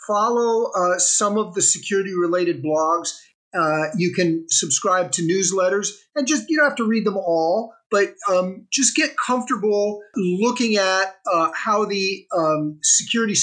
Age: 50-69